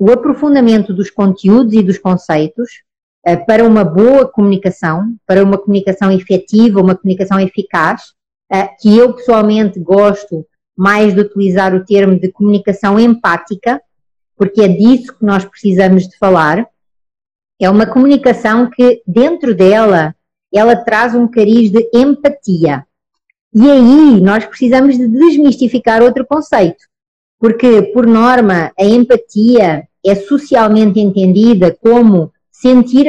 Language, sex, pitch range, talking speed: Portuguese, female, 190-245 Hz, 125 wpm